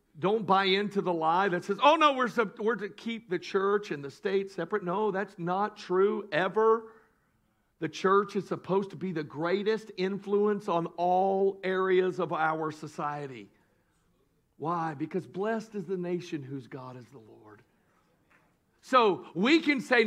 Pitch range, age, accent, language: 135-205 Hz, 50-69, American, English